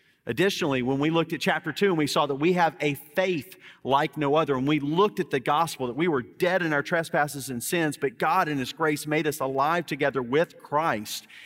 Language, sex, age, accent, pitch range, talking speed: English, male, 40-59, American, 125-155 Hz, 230 wpm